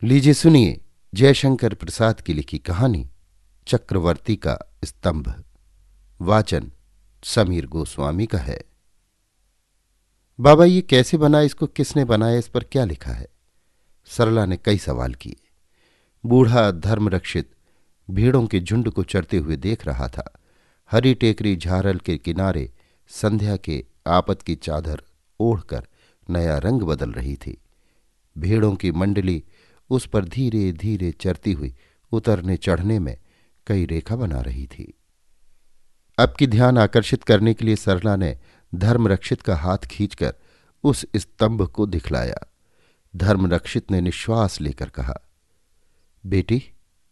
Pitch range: 85-115 Hz